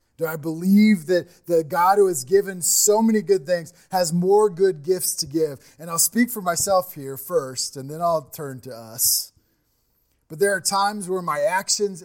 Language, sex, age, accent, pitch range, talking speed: English, male, 20-39, American, 150-220 Hz, 195 wpm